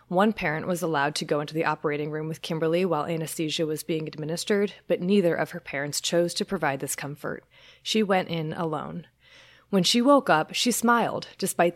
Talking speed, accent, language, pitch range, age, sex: 195 wpm, American, English, 160-210 Hz, 20-39, female